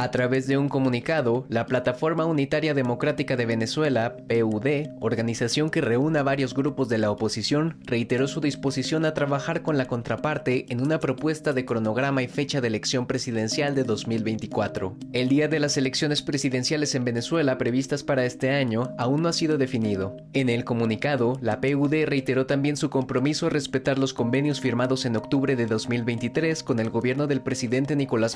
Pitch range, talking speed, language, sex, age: 120-145 Hz, 170 wpm, Spanish, male, 20-39